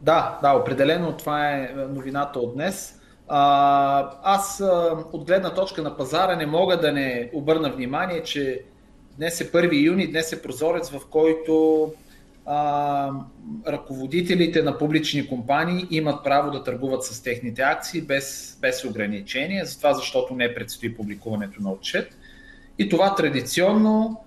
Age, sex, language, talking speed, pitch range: 30-49, male, Bulgarian, 140 wpm, 135-170 Hz